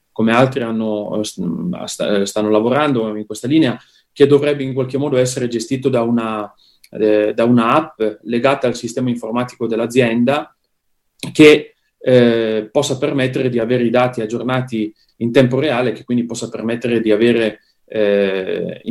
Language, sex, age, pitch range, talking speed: Italian, male, 30-49, 110-140 Hz, 145 wpm